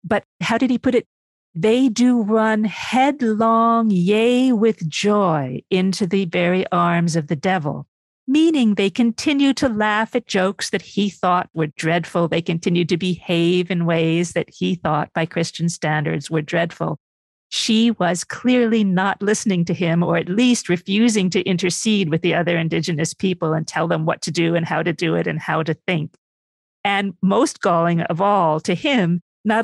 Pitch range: 170-225 Hz